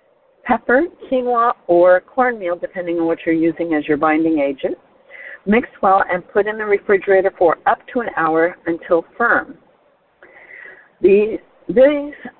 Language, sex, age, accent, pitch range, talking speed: English, female, 50-69, American, 175-255 Hz, 135 wpm